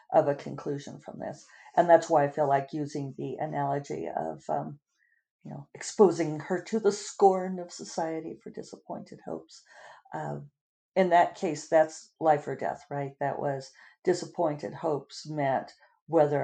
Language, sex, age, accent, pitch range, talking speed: English, female, 50-69, American, 145-185 Hz, 155 wpm